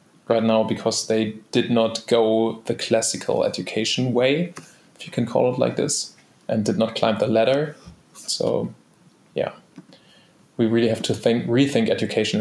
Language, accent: English, German